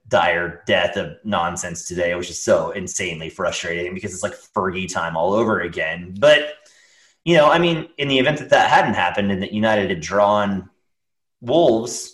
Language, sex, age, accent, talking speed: English, male, 30-49, American, 180 wpm